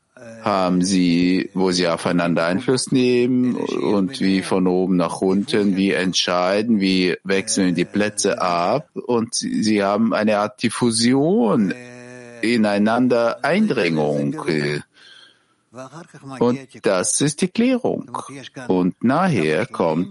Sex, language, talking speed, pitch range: male, German, 105 wpm, 90-125 Hz